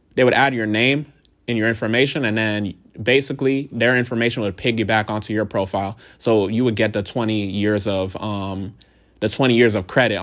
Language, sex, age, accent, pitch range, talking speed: English, male, 20-39, American, 105-120 Hz, 190 wpm